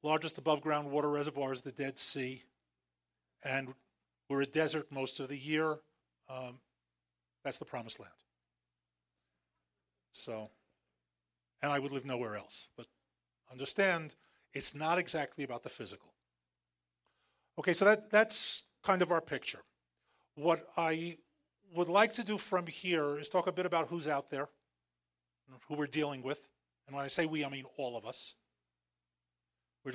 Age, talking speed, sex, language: 40-59, 155 wpm, male, English